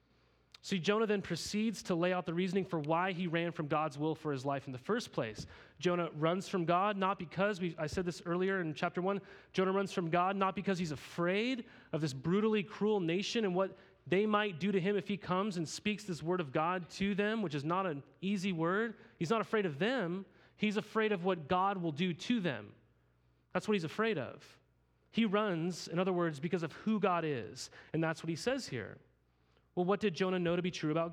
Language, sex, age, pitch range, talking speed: English, male, 30-49, 160-200 Hz, 225 wpm